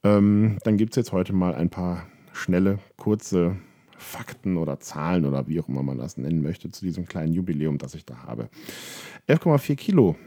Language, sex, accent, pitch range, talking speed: German, male, German, 85-120 Hz, 180 wpm